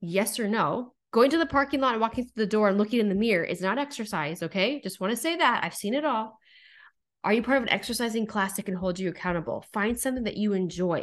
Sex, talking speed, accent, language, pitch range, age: female, 260 wpm, American, English, 180-230 Hz, 20-39